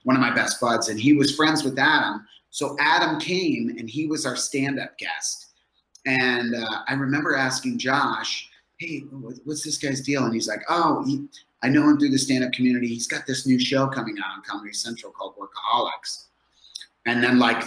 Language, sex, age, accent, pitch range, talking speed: English, male, 30-49, American, 115-135 Hz, 195 wpm